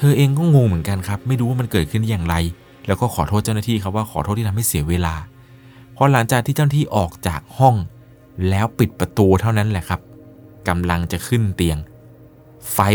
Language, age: Thai, 20-39